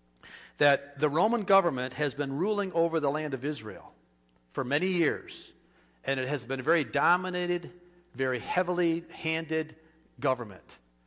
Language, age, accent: English, 50-69, American